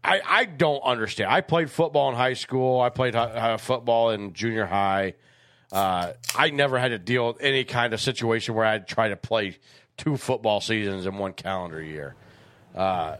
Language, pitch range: English, 120-165 Hz